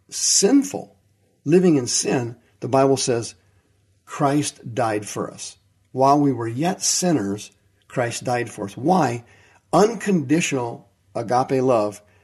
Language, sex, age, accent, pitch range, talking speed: English, male, 50-69, American, 105-140 Hz, 120 wpm